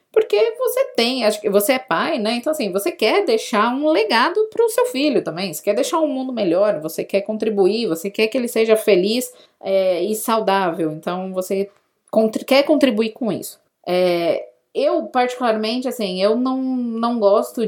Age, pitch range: 20-39, 200-275 Hz